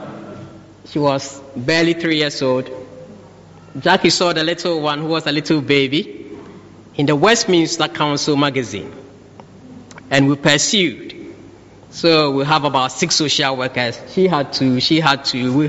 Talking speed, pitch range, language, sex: 145 wpm, 125-170 Hz, English, male